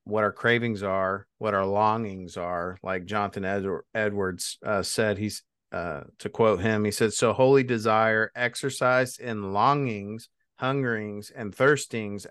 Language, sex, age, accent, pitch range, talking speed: English, male, 40-59, American, 105-125 Hz, 140 wpm